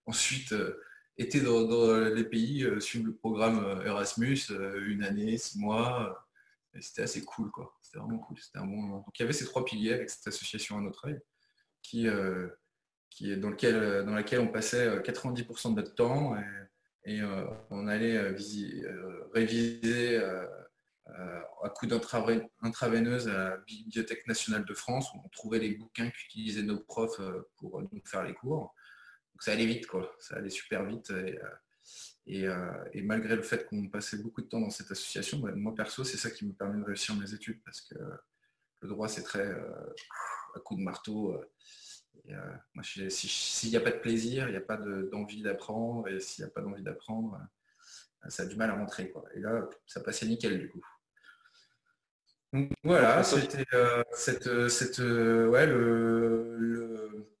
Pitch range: 105-120 Hz